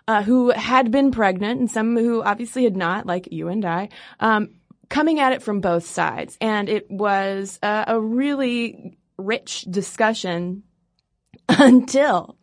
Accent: American